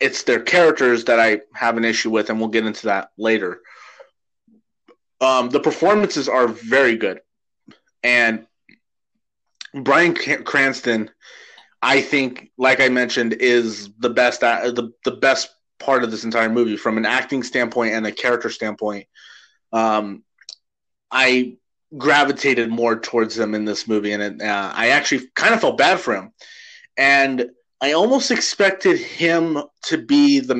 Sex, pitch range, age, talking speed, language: male, 115-140 Hz, 30-49, 155 wpm, English